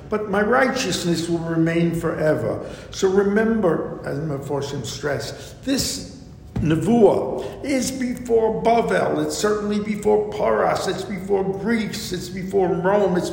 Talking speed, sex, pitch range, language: 125 wpm, male, 150-190 Hz, English